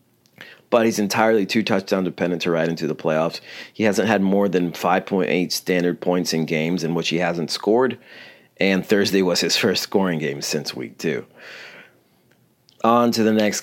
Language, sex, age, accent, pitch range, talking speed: English, male, 40-59, American, 90-105 Hz, 175 wpm